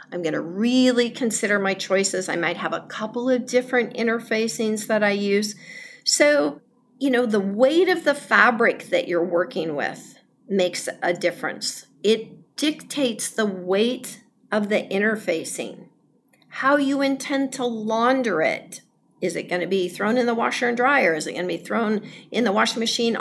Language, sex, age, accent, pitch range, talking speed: English, female, 50-69, American, 205-255 Hz, 165 wpm